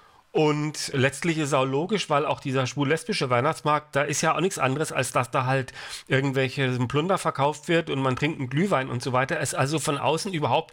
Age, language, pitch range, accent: 40-59, English, 130-165 Hz, German